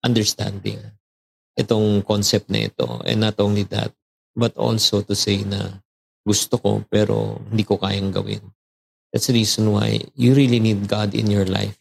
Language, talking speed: Filipino, 160 wpm